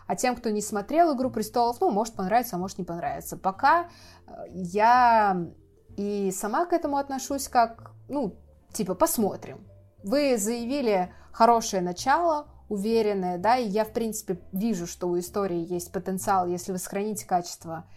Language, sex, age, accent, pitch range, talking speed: Russian, female, 20-39, native, 180-230 Hz, 150 wpm